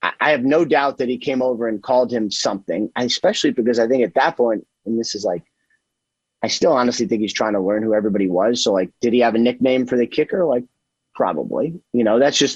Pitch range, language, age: 120-140 Hz, English, 30-49